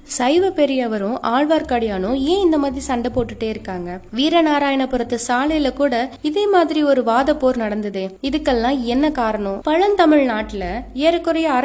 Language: Tamil